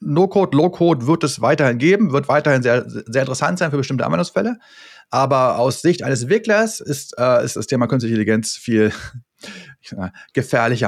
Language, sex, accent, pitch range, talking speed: German, male, German, 125-170 Hz, 160 wpm